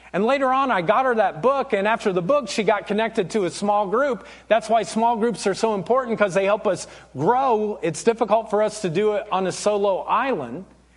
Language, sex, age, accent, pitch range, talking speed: English, male, 40-59, American, 200-265 Hz, 230 wpm